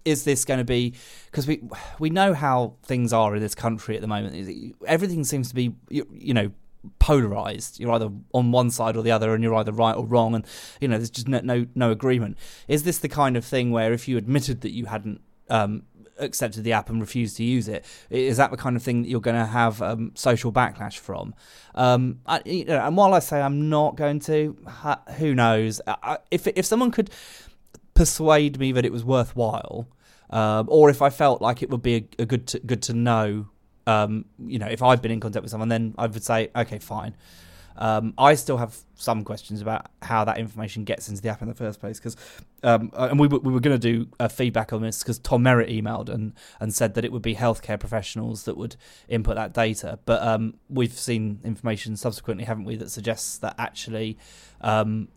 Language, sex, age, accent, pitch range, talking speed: English, male, 20-39, British, 110-130 Hz, 220 wpm